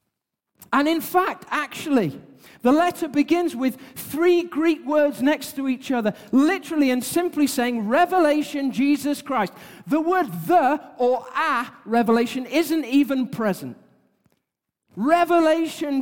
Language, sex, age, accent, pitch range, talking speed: English, male, 40-59, British, 230-315 Hz, 120 wpm